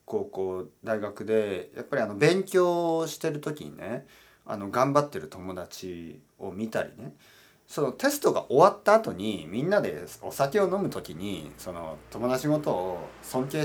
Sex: male